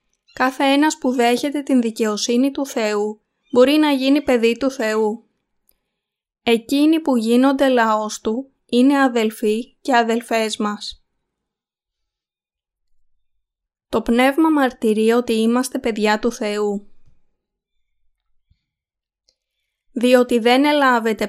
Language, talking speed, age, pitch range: Greek, 100 wpm, 20-39, 215-255 Hz